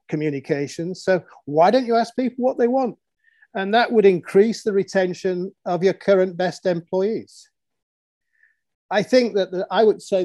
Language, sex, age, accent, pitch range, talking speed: English, male, 50-69, British, 170-205 Hz, 160 wpm